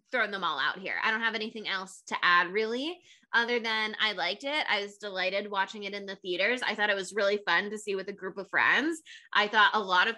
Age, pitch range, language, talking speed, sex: 20-39, 195-240 Hz, English, 260 wpm, female